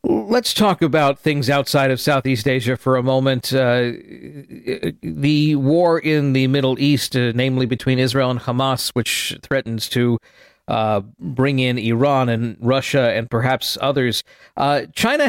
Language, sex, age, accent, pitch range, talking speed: English, male, 50-69, American, 125-150 Hz, 150 wpm